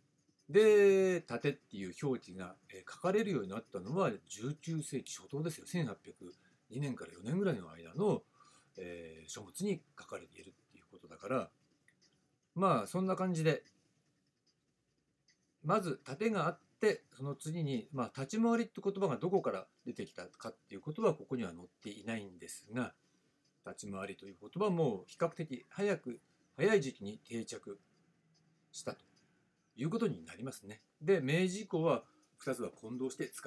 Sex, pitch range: male, 110-185 Hz